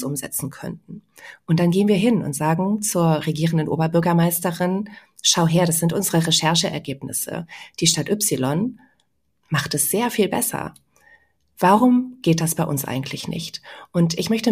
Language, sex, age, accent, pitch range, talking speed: German, female, 30-49, German, 155-195 Hz, 150 wpm